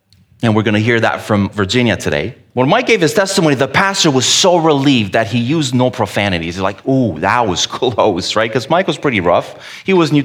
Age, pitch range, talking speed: 30-49, 115-165 Hz, 230 wpm